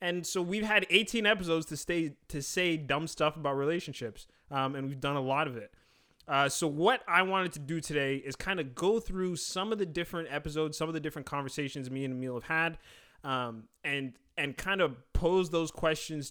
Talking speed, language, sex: 215 wpm, English, male